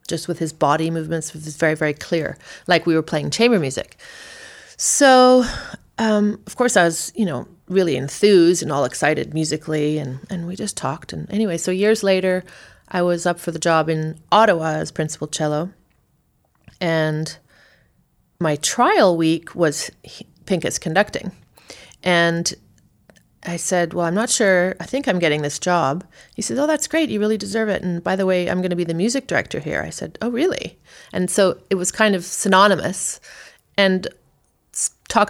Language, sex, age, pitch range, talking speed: English, female, 30-49, 160-195 Hz, 180 wpm